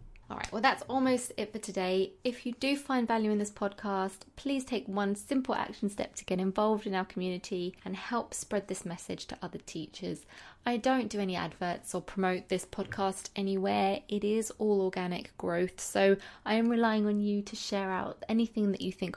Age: 20-39